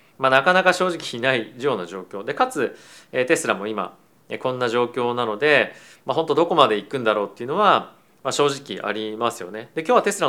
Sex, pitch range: male, 110-140 Hz